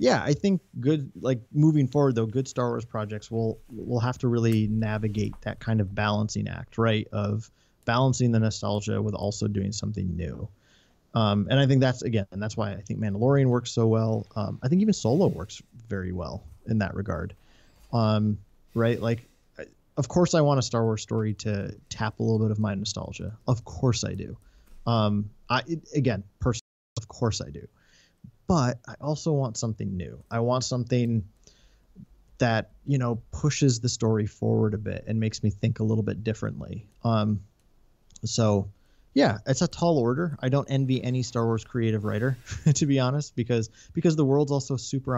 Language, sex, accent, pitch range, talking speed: English, male, American, 105-130 Hz, 185 wpm